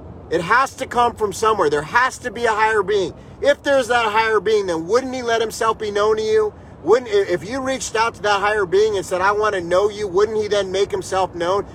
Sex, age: male, 30-49